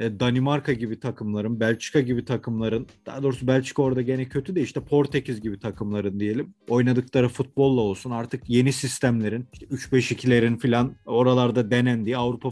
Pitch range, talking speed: 120-145 Hz, 145 wpm